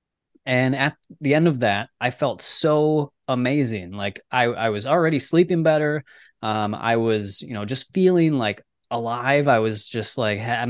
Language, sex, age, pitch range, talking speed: English, male, 20-39, 115-150 Hz, 175 wpm